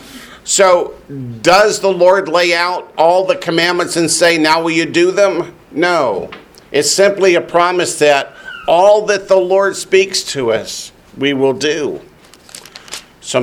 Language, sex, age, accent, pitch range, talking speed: English, male, 50-69, American, 150-180 Hz, 150 wpm